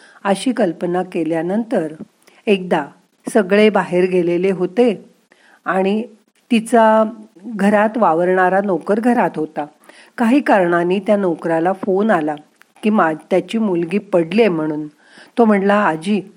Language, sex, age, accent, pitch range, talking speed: Marathi, female, 40-59, native, 175-220 Hz, 115 wpm